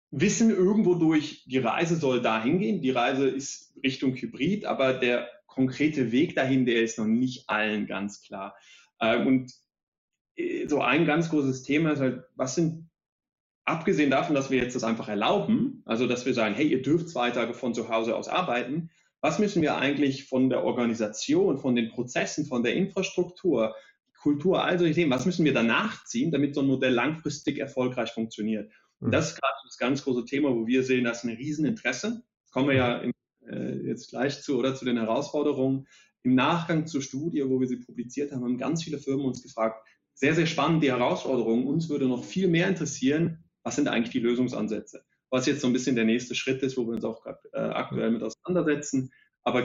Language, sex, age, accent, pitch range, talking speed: German, male, 30-49, German, 120-150 Hz, 195 wpm